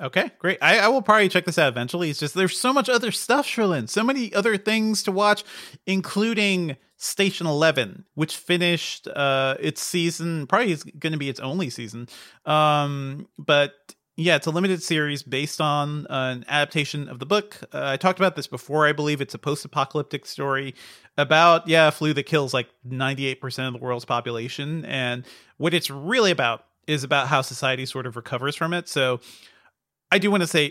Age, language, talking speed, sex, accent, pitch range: 30-49, English, 190 wpm, male, American, 130-175 Hz